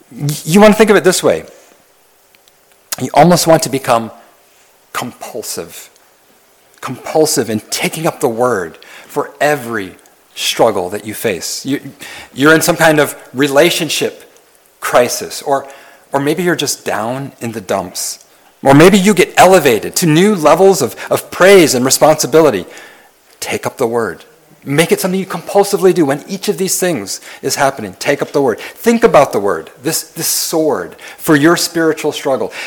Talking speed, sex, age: 160 wpm, male, 40-59